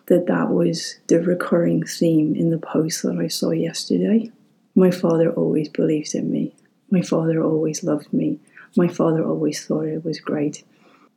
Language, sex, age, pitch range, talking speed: English, female, 30-49, 160-205 Hz, 165 wpm